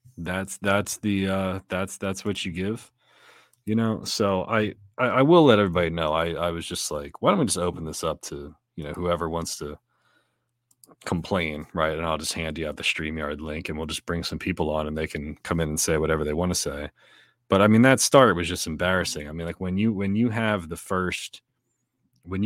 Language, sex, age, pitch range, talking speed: English, male, 30-49, 85-105 Hz, 230 wpm